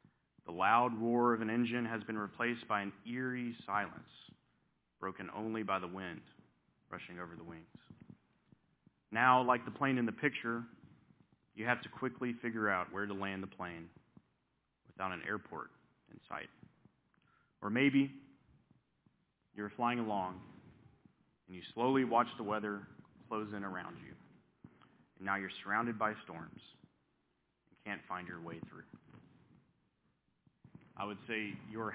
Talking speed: 145 wpm